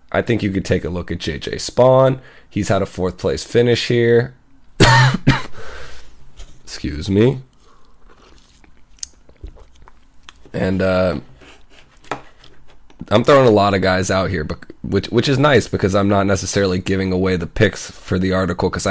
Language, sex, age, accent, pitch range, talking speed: English, male, 20-39, American, 85-105 Hz, 145 wpm